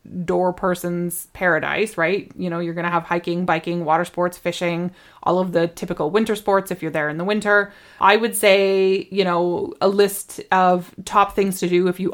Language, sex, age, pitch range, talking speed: English, female, 20-39, 175-195 Hz, 205 wpm